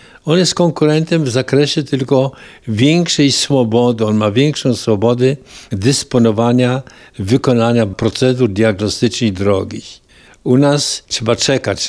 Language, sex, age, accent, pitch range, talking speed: Polish, male, 60-79, native, 110-140 Hz, 110 wpm